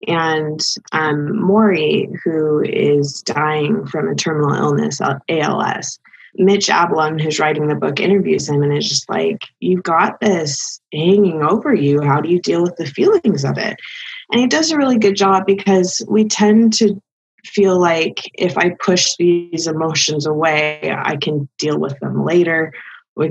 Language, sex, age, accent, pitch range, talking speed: English, female, 20-39, American, 155-200 Hz, 165 wpm